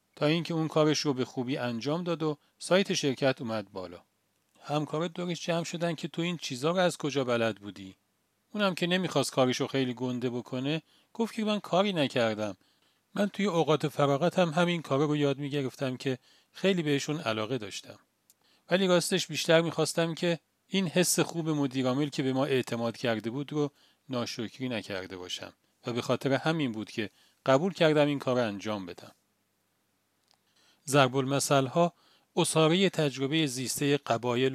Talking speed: 160 wpm